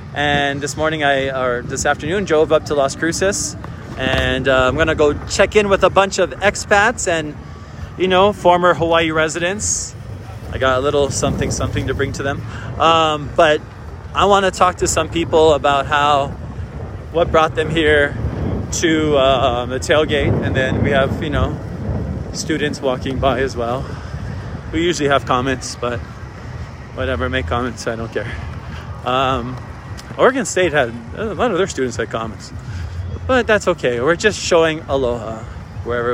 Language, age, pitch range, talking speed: English, 20-39, 115-160 Hz, 170 wpm